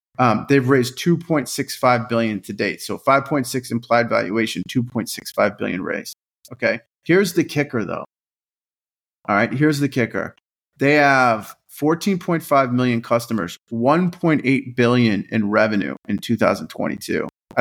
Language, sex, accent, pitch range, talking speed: English, male, American, 115-140 Hz, 120 wpm